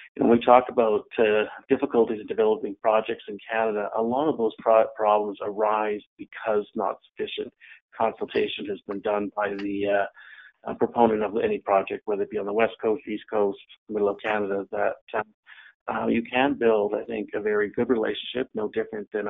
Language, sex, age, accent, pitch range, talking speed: English, male, 40-59, American, 105-120 Hz, 185 wpm